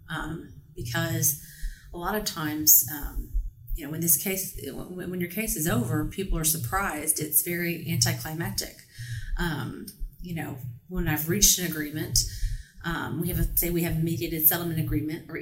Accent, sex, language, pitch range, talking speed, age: American, female, English, 140-175 Hz, 165 wpm, 30-49